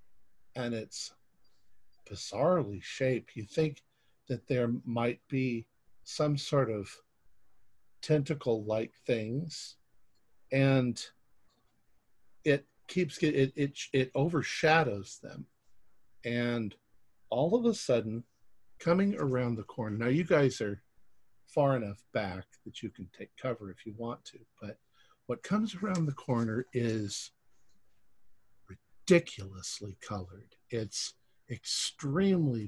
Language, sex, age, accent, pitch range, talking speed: English, male, 50-69, American, 110-150 Hz, 110 wpm